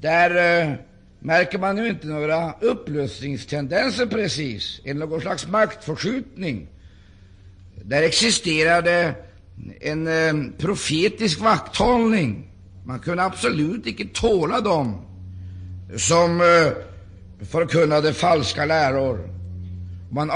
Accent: native